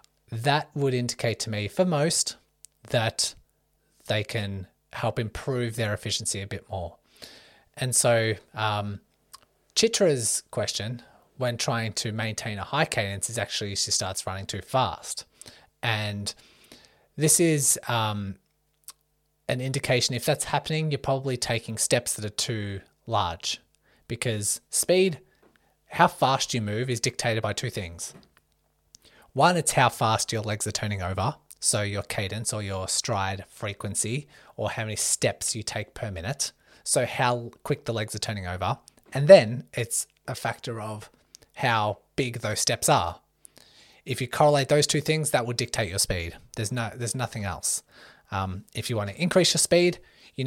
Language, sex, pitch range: English, male, 105-135 Hz